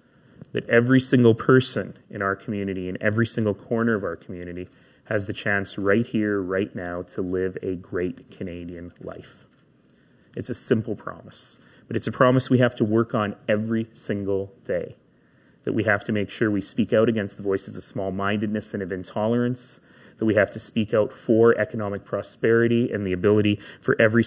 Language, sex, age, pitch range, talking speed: English, male, 30-49, 105-120 Hz, 185 wpm